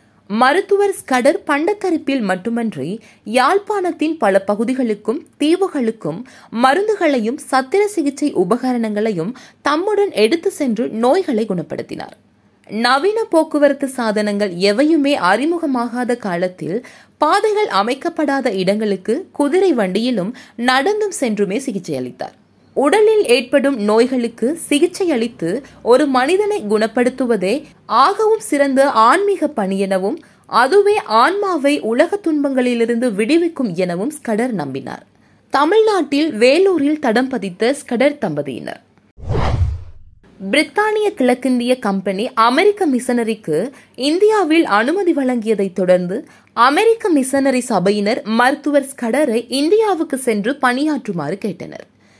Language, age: Tamil, 20-39